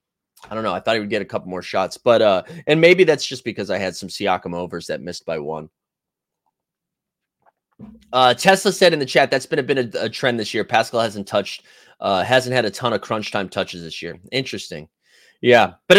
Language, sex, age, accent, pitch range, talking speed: English, male, 30-49, American, 115-160 Hz, 225 wpm